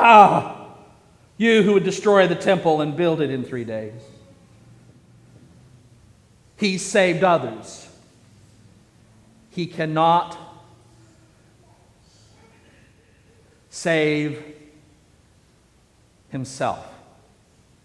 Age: 50-69